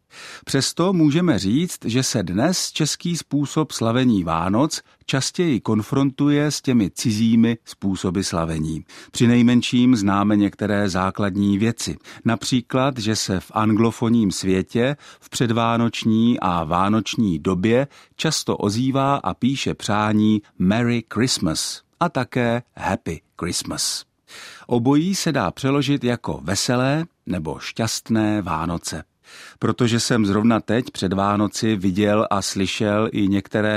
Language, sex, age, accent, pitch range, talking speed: Czech, male, 50-69, native, 100-130 Hz, 115 wpm